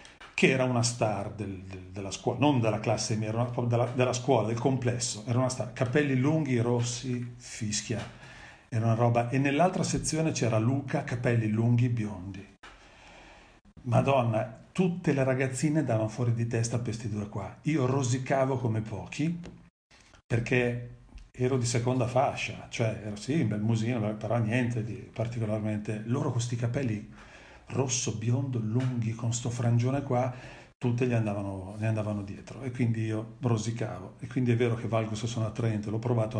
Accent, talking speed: native, 160 wpm